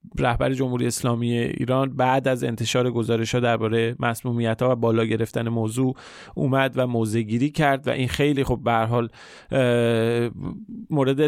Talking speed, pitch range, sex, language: 140 wpm, 120-145 Hz, male, Persian